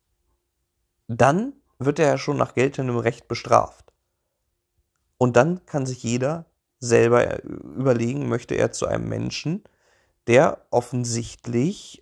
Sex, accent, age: male, German, 40-59